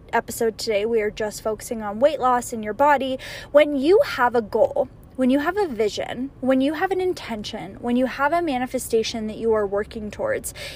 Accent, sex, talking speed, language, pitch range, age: American, female, 205 wpm, English, 230-285 Hz, 10-29